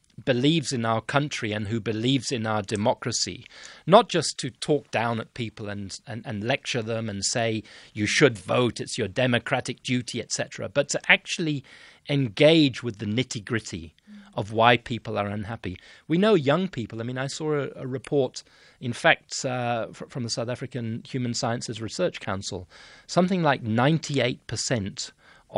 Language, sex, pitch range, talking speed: English, male, 115-140 Hz, 165 wpm